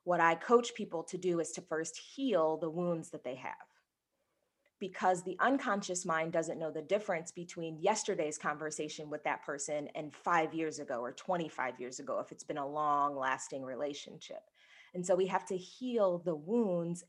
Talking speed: 185 wpm